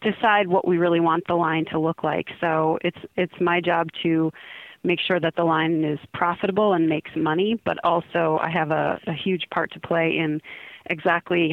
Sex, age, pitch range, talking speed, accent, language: female, 30-49, 160-180 Hz, 200 wpm, American, English